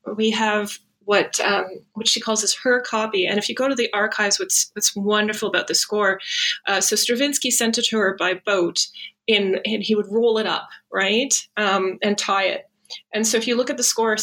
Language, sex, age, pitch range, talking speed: English, female, 30-49, 200-240 Hz, 220 wpm